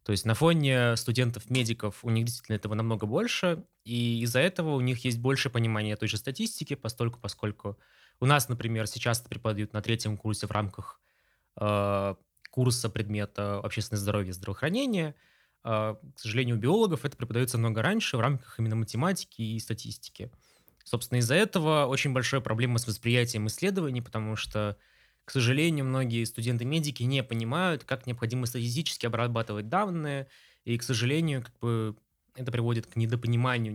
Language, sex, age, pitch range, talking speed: Russian, male, 20-39, 110-135 Hz, 155 wpm